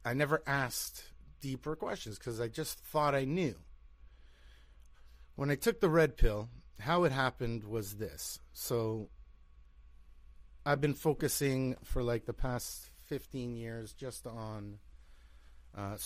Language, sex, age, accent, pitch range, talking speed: English, male, 30-49, American, 100-140 Hz, 130 wpm